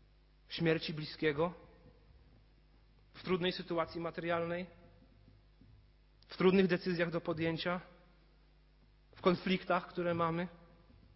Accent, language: native, Polish